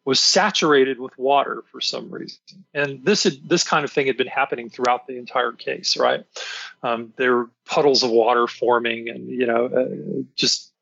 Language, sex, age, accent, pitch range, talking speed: English, male, 40-59, American, 135-195 Hz, 190 wpm